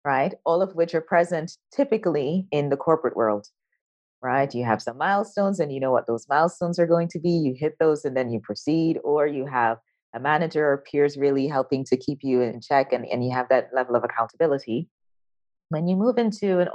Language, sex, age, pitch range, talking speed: English, female, 30-49, 135-185 Hz, 215 wpm